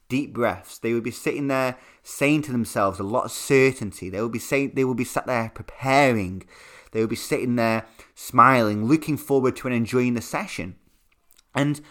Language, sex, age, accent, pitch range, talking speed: English, male, 20-39, British, 110-155 Hz, 190 wpm